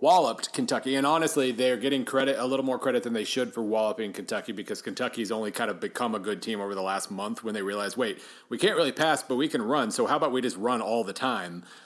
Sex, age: male, 30-49